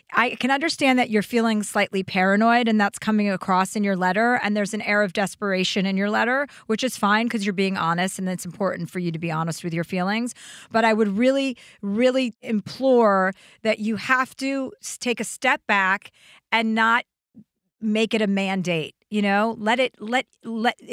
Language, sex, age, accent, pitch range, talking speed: English, female, 40-59, American, 190-230 Hz, 195 wpm